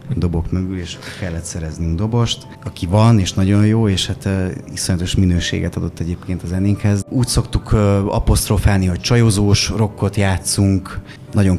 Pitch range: 90-100 Hz